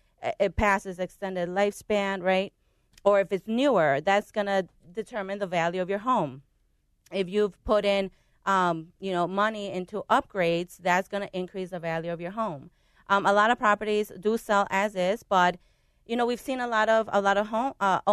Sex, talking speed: female, 190 wpm